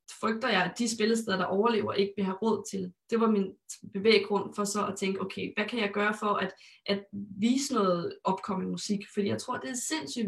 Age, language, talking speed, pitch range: 20-39, Danish, 220 wpm, 200-230 Hz